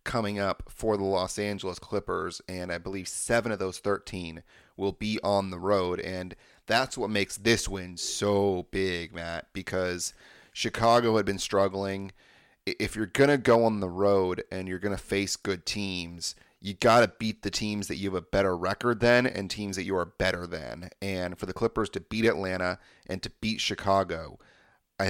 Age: 30-49